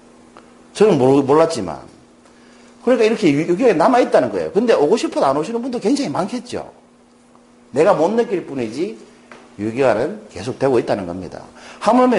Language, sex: Korean, male